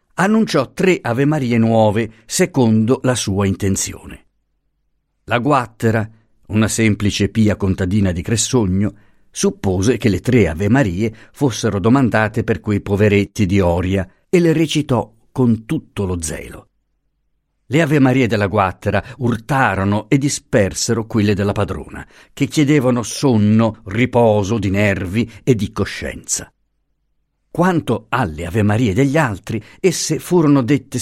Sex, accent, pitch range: male, native, 100-130 Hz